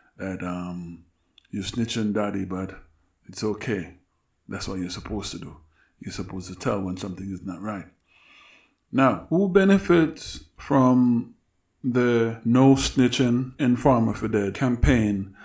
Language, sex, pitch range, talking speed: English, male, 105-130 Hz, 135 wpm